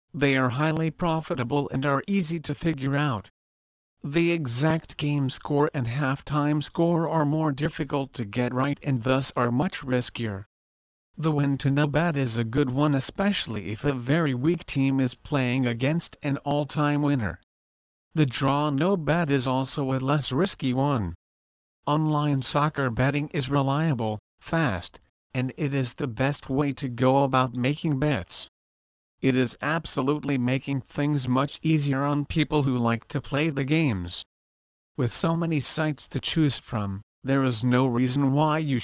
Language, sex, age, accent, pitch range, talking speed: English, male, 50-69, American, 125-150 Hz, 160 wpm